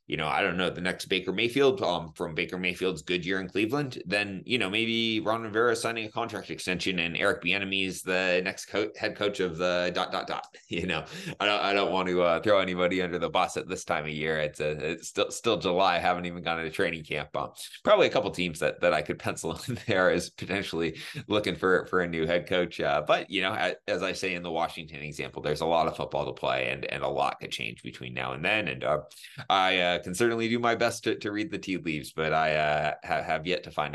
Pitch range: 80-95 Hz